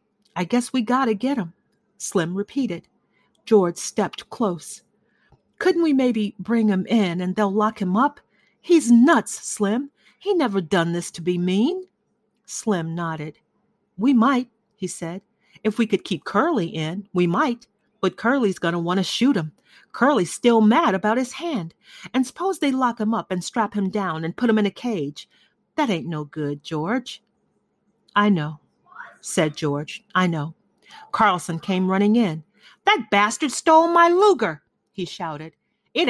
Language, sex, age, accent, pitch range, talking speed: English, female, 40-59, American, 175-240 Hz, 165 wpm